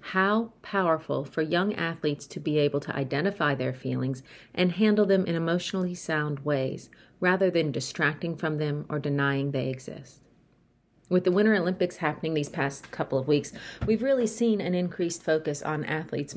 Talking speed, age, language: 170 wpm, 40-59, English